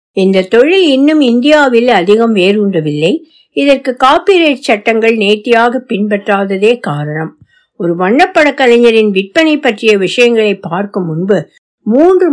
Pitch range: 185-280 Hz